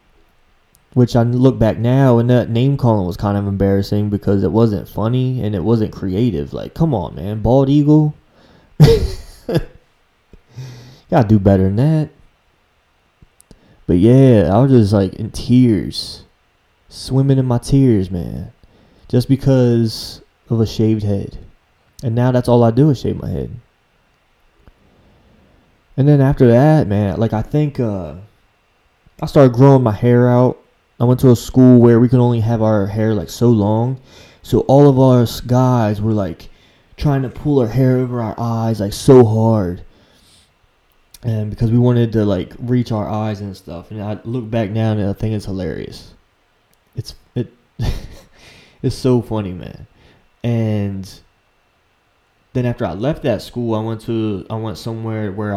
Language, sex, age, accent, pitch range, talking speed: English, male, 20-39, American, 100-125 Hz, 160 wpm